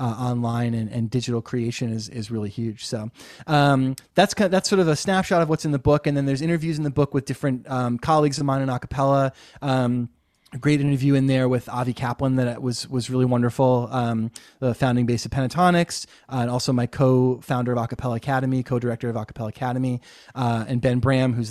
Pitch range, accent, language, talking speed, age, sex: 120-140 Hz, American, English, 215 wpm, 20-39, male